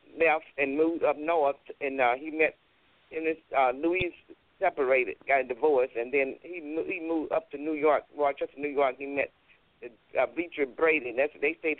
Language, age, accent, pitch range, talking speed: English, 50-69, American, 130-155 Hz, 185 wpm